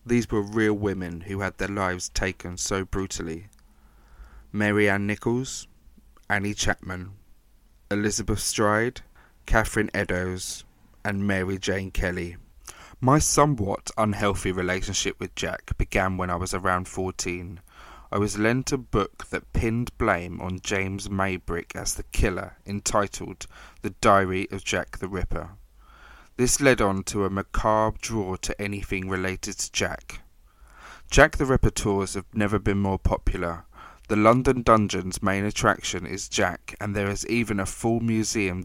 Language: English